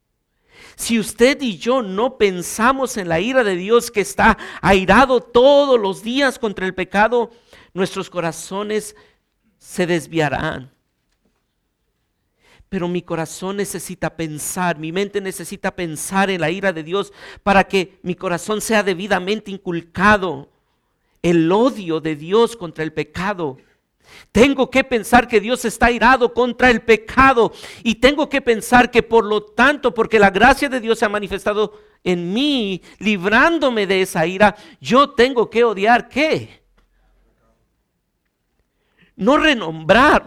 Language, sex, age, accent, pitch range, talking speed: Spanish, male, 50-69, Mexican, 180-240 Hz, 135 wpm